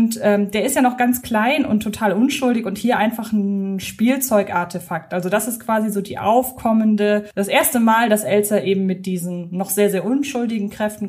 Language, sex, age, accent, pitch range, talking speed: German, female, 20-39, German, 205-250 Hz, 195 wpm